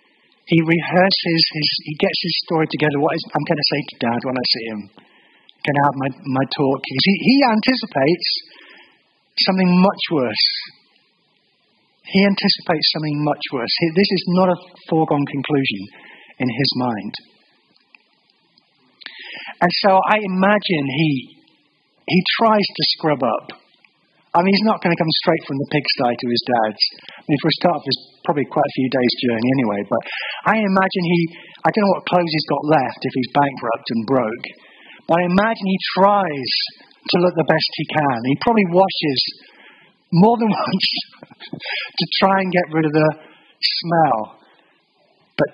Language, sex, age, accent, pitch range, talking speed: English, male, 40-59, British, 140-190 Hz, 170 wpm